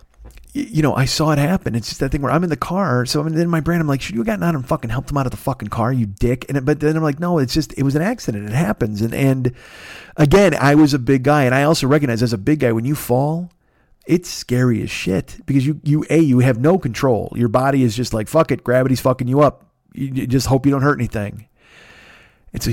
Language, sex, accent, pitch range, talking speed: English, male, American, 120-155 Hz, 275 wpm